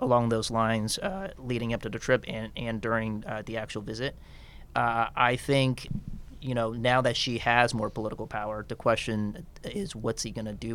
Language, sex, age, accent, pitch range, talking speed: English, male, 30-49, American, 110-120 Hz, 195 wpm